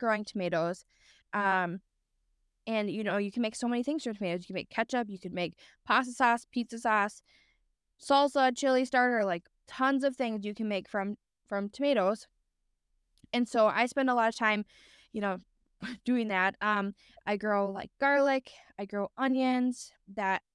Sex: female